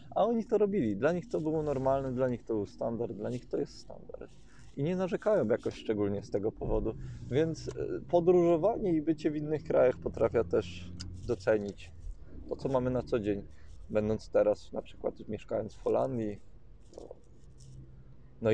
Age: 20-39